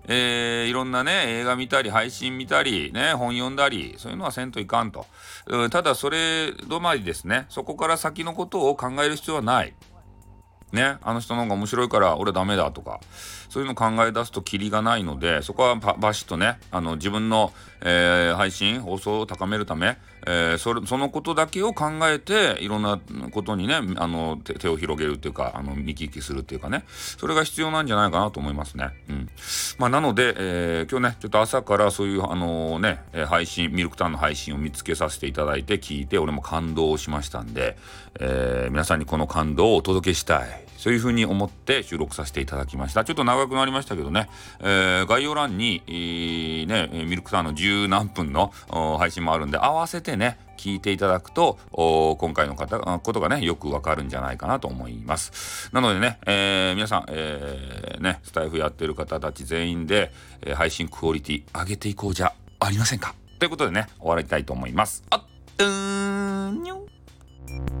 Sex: male